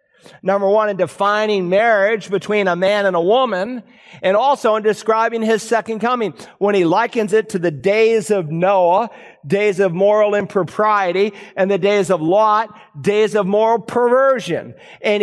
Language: English